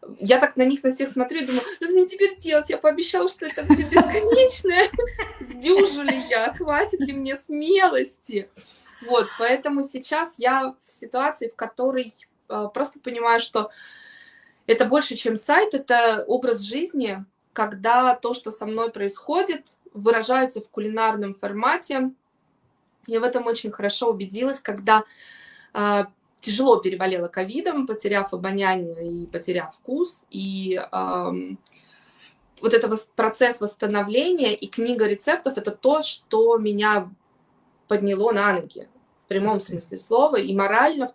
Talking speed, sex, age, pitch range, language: 140 wpm, female, 20-39, 215-295 Hz, Russian